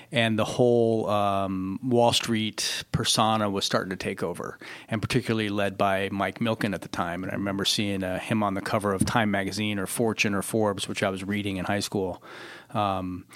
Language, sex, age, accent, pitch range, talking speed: English, male, 30-49, American, 100-115 Hz, 200 wpm